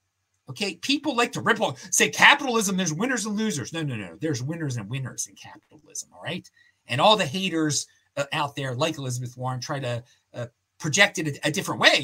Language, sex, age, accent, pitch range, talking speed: English, male, 40-59, American, 135-220 Hz, 210 wpm